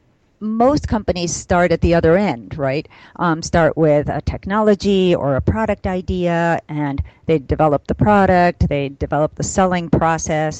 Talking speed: 155 wpm